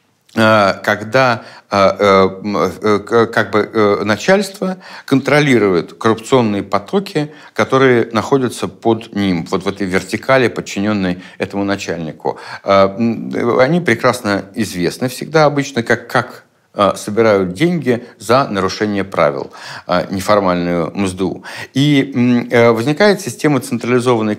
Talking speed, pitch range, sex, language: 85 wpm, 100-130 Hz, male, Russian